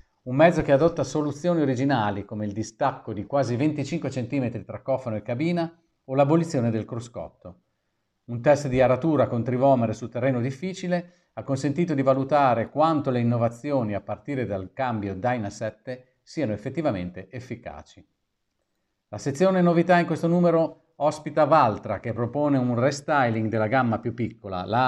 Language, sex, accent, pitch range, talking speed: Italian, male, native, 110-150 Hz, 150 wpm